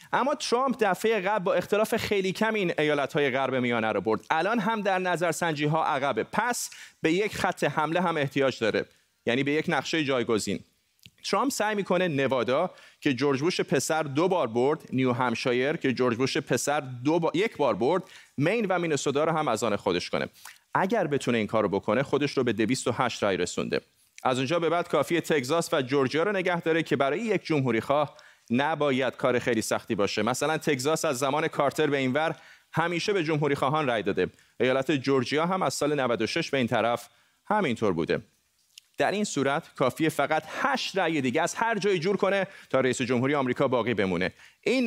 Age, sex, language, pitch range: 30-49, male, Persian, 130-175 Hz